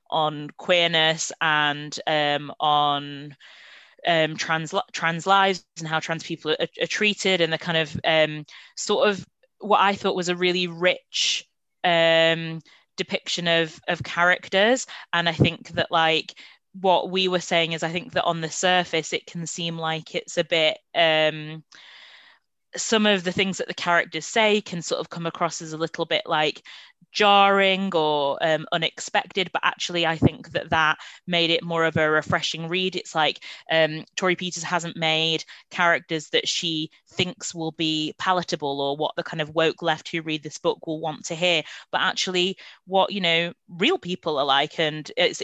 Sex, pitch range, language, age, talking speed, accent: female, 155-185 Hz, English, 20-39, 175 wpm, British